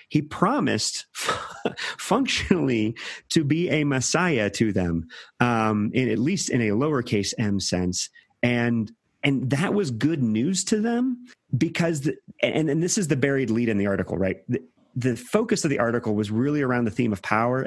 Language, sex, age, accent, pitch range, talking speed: English, male, 30-49, American, 110-140 Hz, 175 wpm